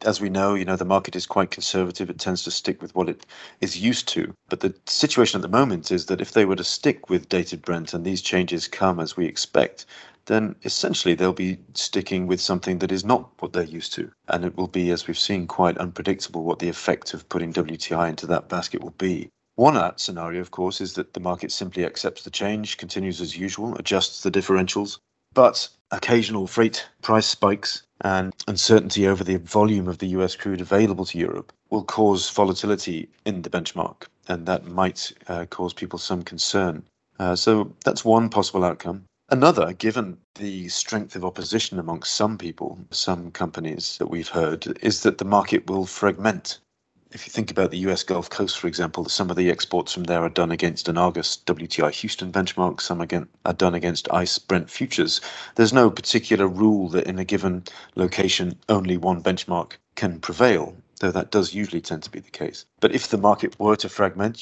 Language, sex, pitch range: English, male, 90-100 Hz